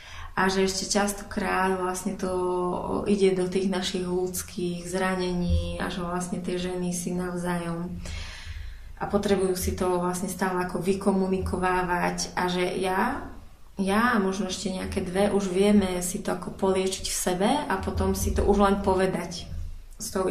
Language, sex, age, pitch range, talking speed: Slovak, female, 20-39, 180-200 Hz, 155 wpm